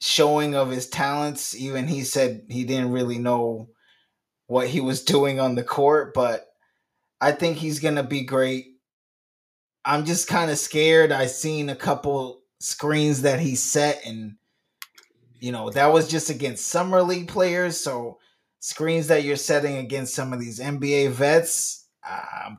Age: 20-39